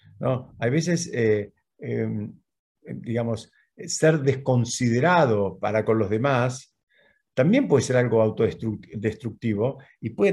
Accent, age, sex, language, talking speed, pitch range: Argentinian, 50-69, male, Spanish, 105 wpm, 115-145 Hz